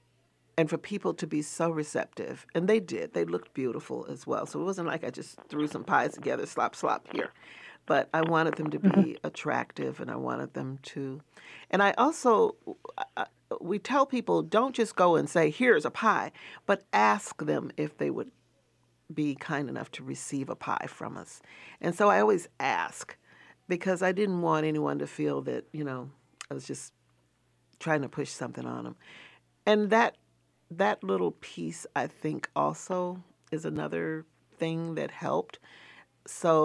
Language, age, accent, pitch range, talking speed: English, 40-59, American, 145-180 Hz, 175 wpm